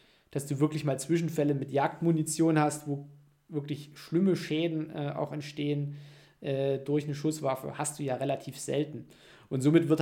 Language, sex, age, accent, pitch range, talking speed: German, male, 20-39, German, 135-160 Hz, 160 wpm